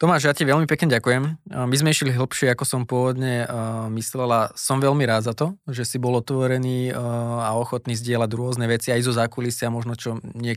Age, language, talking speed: 20-39, Slovak, 200 wpm